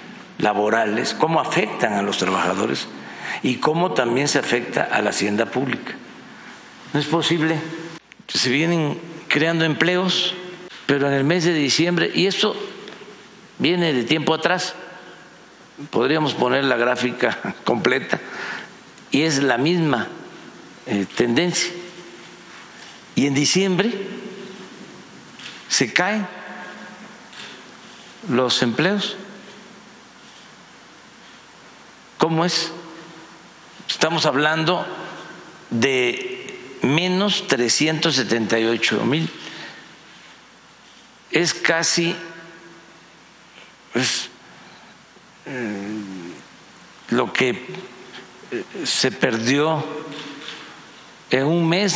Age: 60-79